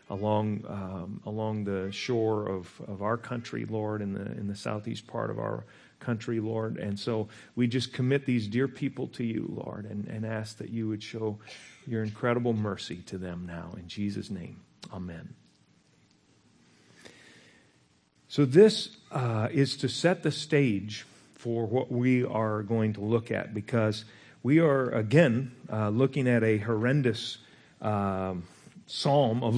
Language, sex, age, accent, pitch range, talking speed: English, male, 40-59, American, 105-135 Hz, 155 wpm